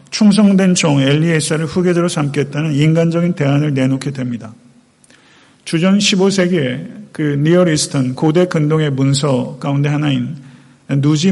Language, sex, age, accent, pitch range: Korean, male, 40-59, native, 135-170 Hz